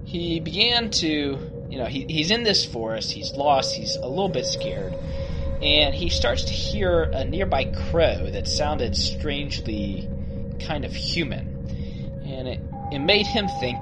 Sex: male